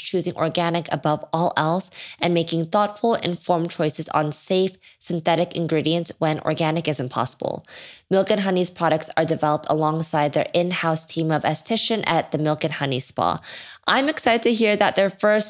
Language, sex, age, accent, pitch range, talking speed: English, female, 20-39, American, 160-205 Hz, 165 wpm